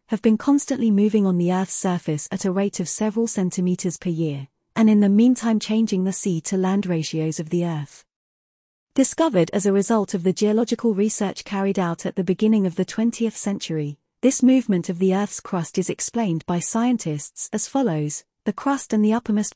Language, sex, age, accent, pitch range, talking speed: English, female, 40-59, British, 175-225 Hz, 185 wpm